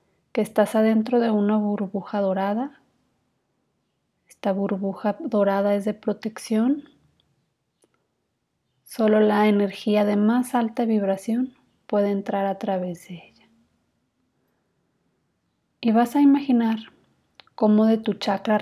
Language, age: Spanish, 30-49